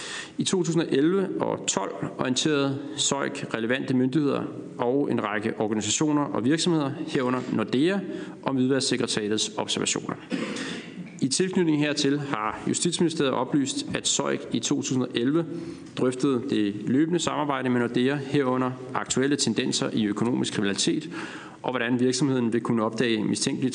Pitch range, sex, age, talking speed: 120-150 Hz, male, 40-59, 120 wpm